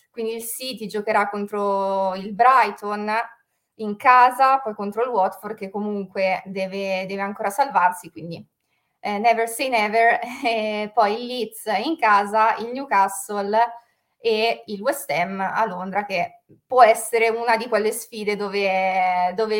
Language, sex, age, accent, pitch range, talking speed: Italian, female, 20-39, native, 195-230 Hz, 140 wpm